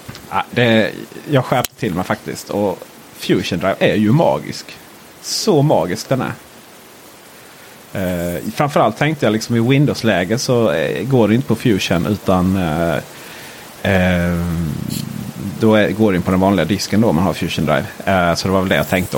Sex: male